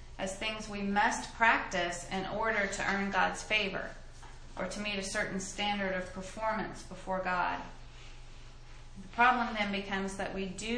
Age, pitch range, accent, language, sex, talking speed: 30-49, 170-205 Hz, American, English, female, 155 wpm